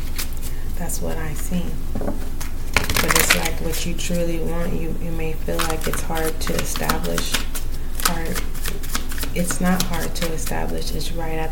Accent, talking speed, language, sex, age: American, 145 wpm, English, female, 20-39